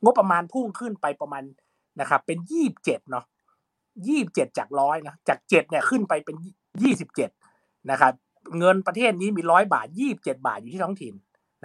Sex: male